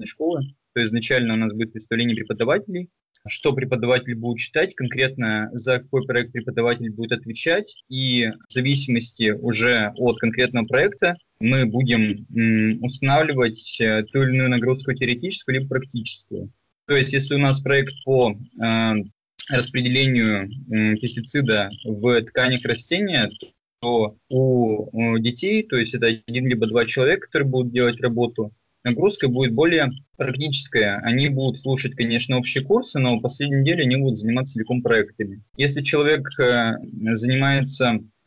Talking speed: 140 wpm